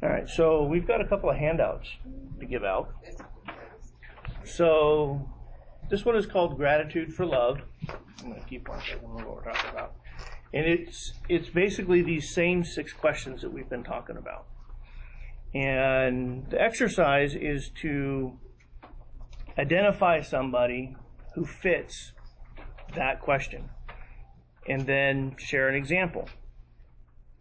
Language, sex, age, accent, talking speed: English, male, 40-59, American, 120 wpm